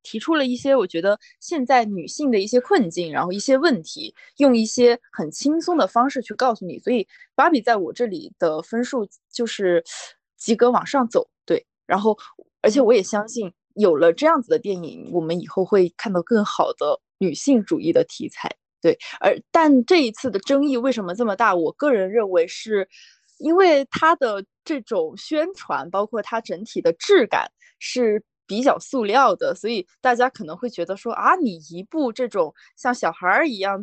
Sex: female